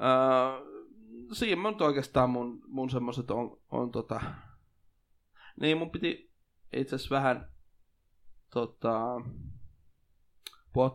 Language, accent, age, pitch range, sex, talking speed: Finnish, native, 20-39, 120-140 Hz, male, 105 wpm